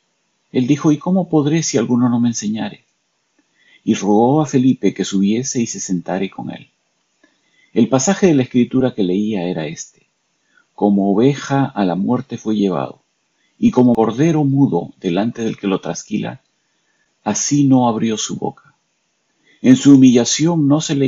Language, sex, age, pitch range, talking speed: Spanish, male, 50-69, 100-140 Hz, 160 wpm